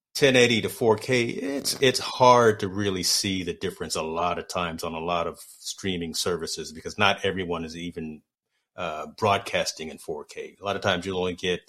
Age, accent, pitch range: 40-59, American, 85-110 Hz